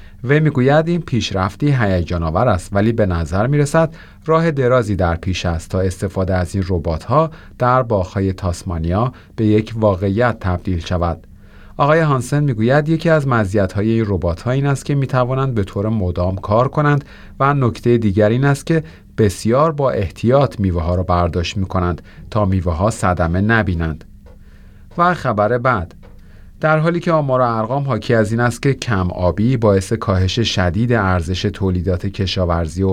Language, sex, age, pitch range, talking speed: Persian, male, 40-59, 95-130 Hz, 155 wpm